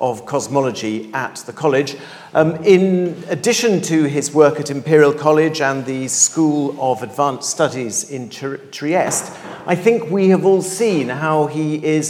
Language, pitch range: English, 140-180 Hz